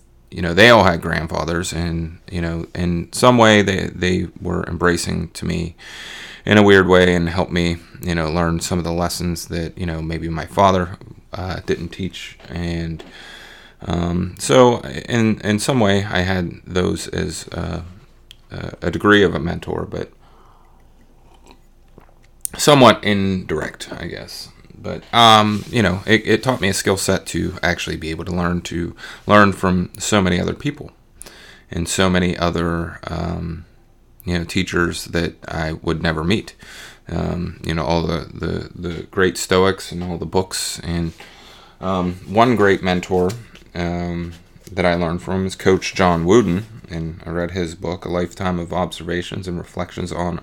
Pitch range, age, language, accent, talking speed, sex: 85-95 Hz, 30-49, English, American, 165 wpm, male